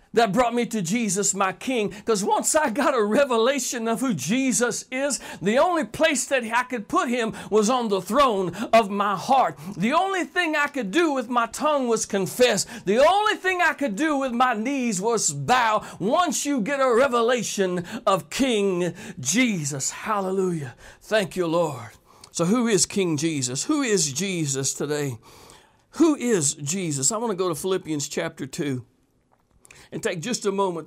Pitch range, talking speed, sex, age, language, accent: 170-245 Hz, 175 wpm, male, 60-79, English, American